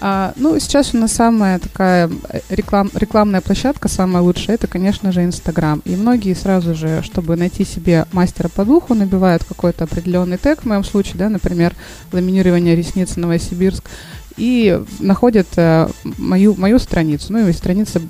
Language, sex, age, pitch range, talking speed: Russian, female, 20-39, 170-195 Hz, 145 wpm